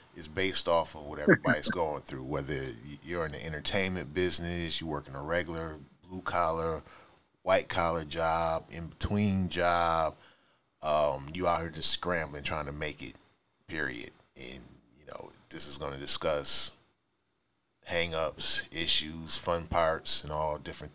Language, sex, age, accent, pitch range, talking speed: English, male, 30-49, American, 75-85 Hz, 145 wpm